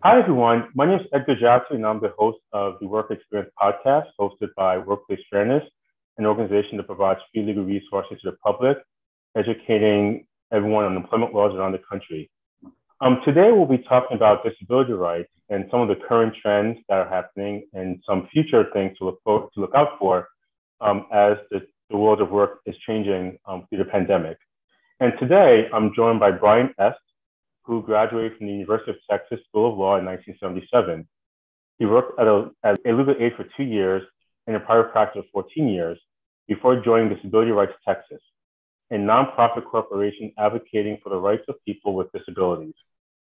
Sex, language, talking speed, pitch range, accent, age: male, English, 180 wpm, 100-115 Hz, American, 30-49